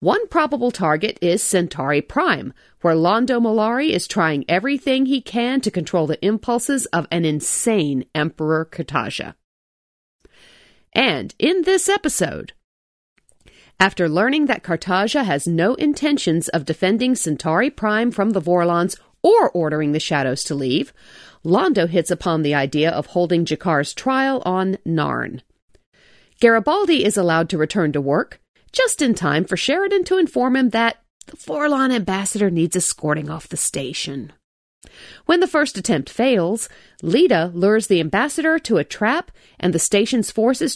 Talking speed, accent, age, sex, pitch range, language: 145 wpm, American, 50-69, female, 165-250 Hz, English